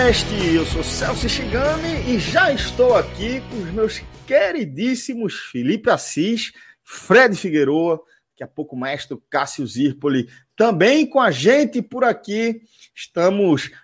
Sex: male